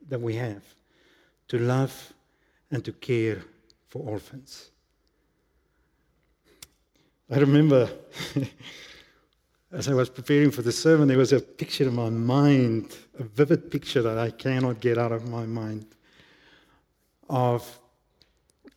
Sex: male